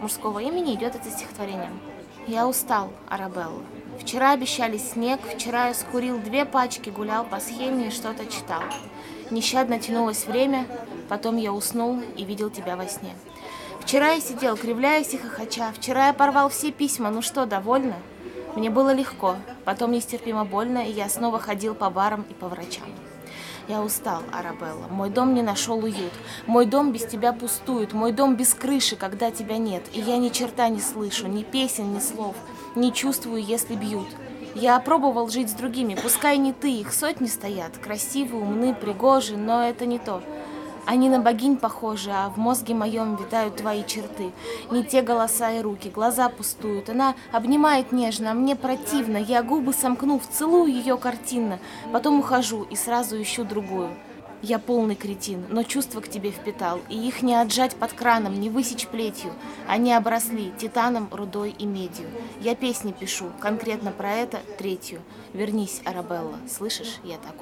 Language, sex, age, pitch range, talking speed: Russian, female, 20-39, 210-255 Hz, 165 wpm